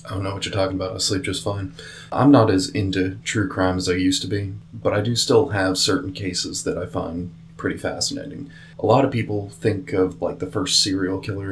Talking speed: 235 wpm